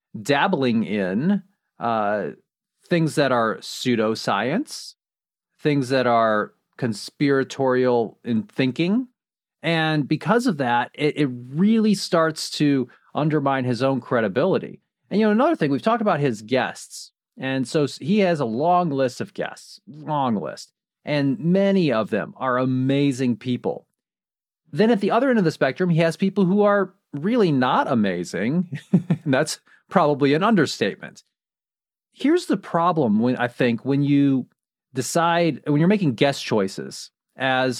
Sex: male